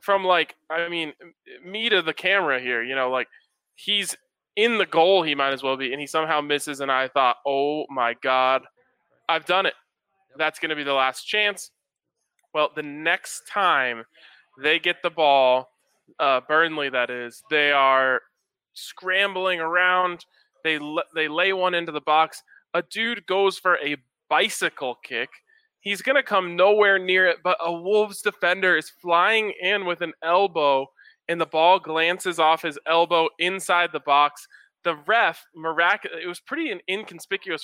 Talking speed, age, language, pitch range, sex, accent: 165 wpm, 20-39, English, 150-185 Hz, male, American